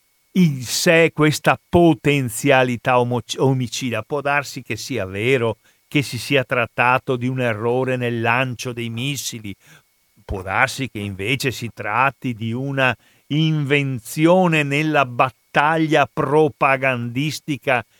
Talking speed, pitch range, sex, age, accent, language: 110 wpm, 120-155 Hz, male, 50-69, native, Italian